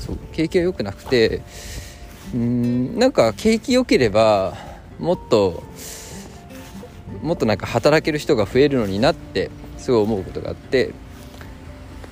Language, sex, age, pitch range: Japanese, male, 20-39, 90-125 Hz